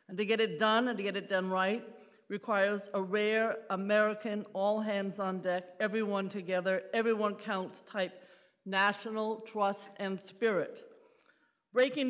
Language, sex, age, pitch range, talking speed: English, female, 50-69, 195-230 Hz, 145 wpm